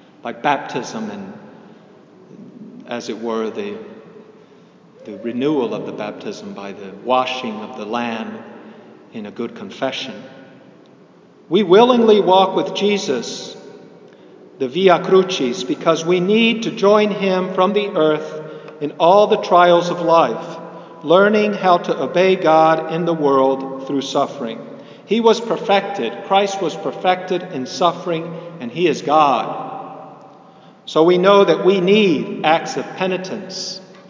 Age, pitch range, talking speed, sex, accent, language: 50-69, 150-190 Hz, 135 wpm, male, American, English